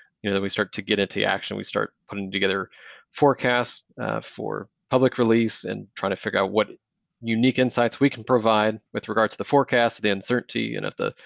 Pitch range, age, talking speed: 105-120 Hz, 30-49, 210 wpm